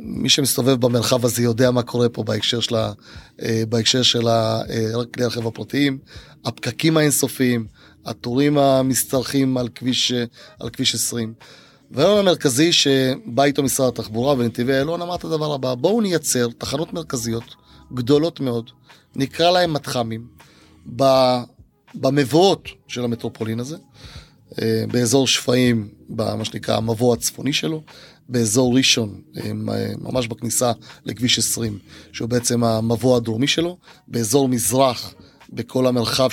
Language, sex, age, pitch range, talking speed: Hebrew, male, 30-49, 115-140 Hz, 115 wpm